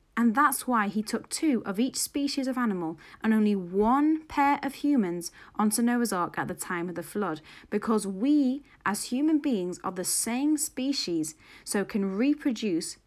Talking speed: 175 wpm